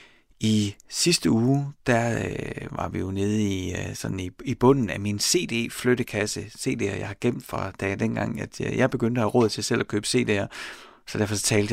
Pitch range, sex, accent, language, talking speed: 100-125 Hz, male, native, Danish, 215 wpm